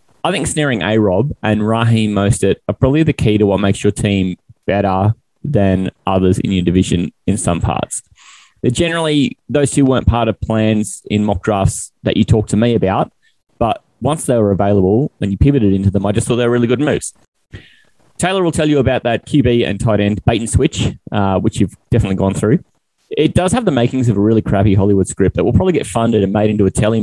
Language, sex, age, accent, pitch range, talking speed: English, male, 20-39, Australian, 100-130 Hz, 220 wpm